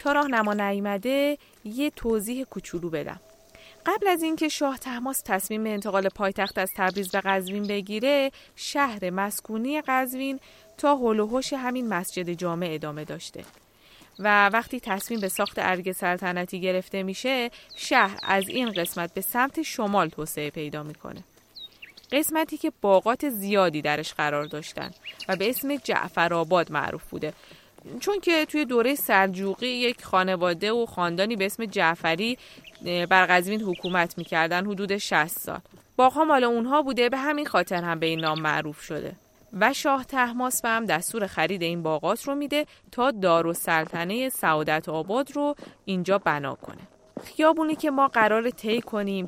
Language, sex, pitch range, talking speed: Persian, female, 175-250 Hz, 145 wpm